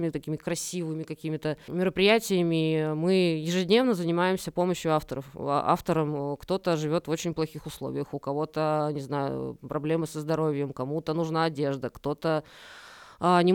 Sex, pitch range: female, 150-185 Hz